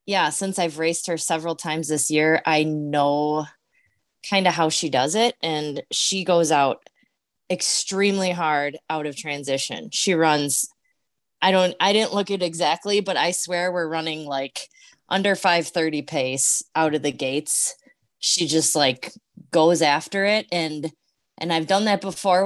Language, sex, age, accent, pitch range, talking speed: English, female, 20-39, American, 155-195 Hz, 160 wpm